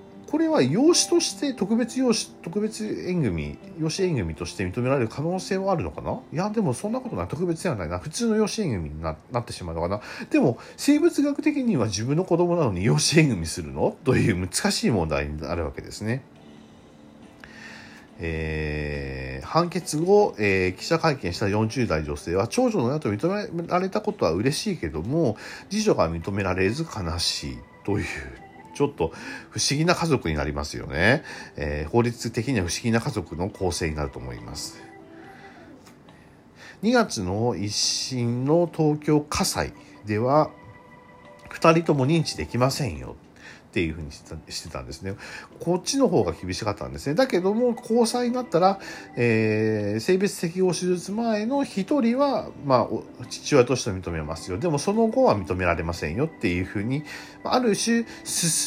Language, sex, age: Japanese, male, 40-59